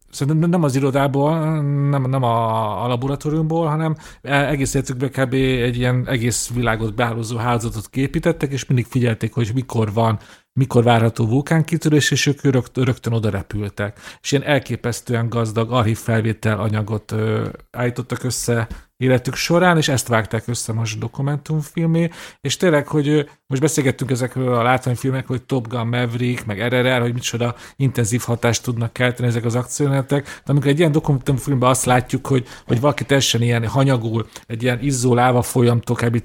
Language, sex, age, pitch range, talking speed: Hungarian, male, 40-59, 115-140 Hz, 145 wpm